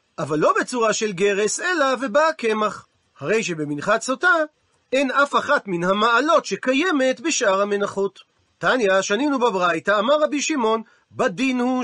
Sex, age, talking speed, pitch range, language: male, 40-59, 135 wpm, 195-260 Hz, Hebrew